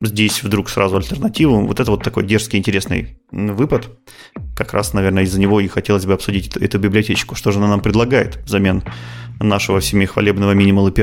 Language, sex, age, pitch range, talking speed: Russian, male, 30-49, 100-115 Hz, 180 wpm